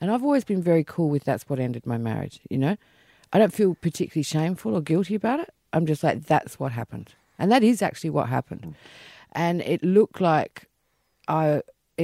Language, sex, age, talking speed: English, female, 50-69, 200 wpm